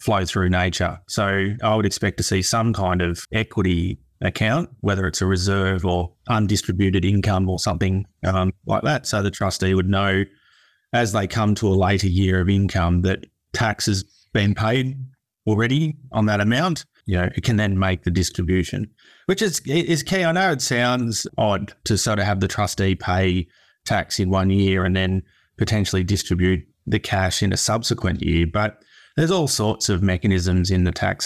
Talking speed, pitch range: 185 wpm, 95-110 Hz